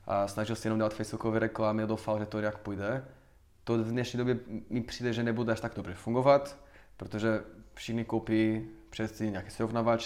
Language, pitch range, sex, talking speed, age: Czech, 110-125 Hz, male, 185 wpm, 20-39